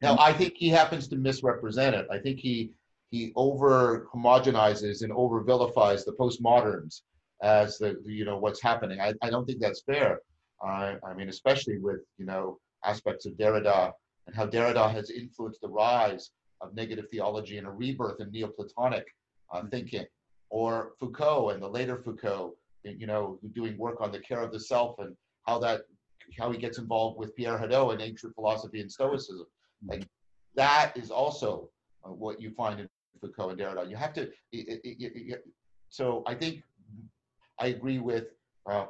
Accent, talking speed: American, 175 wpm